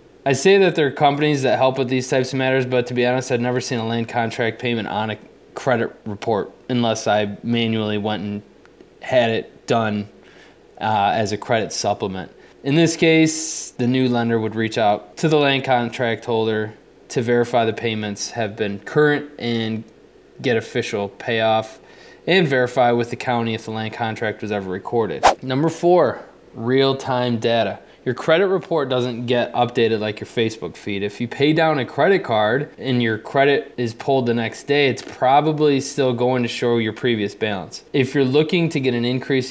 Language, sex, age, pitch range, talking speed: English, male, 20-39, 110-130 Hz, 185 wpm